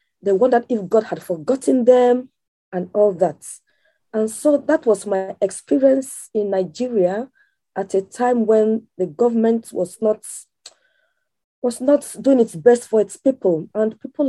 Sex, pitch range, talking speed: female, 200-255 Hz, 145 wpm